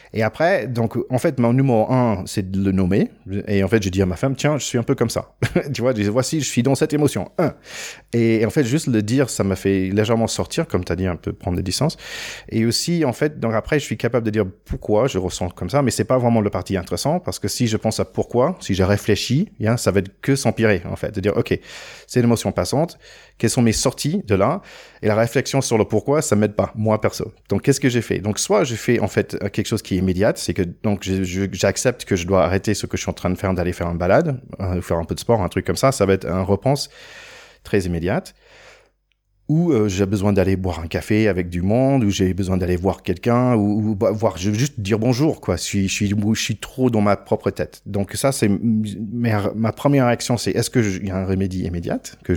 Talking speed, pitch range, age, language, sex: 260 wpm, 95-120 Hz, 30-49, French, male